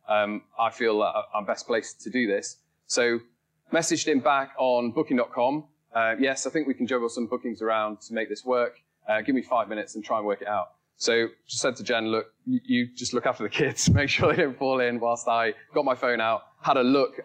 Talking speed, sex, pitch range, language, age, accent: 225 wpm, male, 105-130 Hz, English, 20-39, British